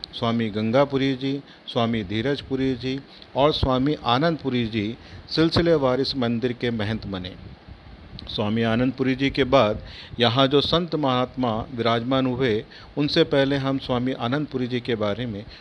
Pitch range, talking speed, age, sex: 115-135 Hz, 140 wpm, 40-59, male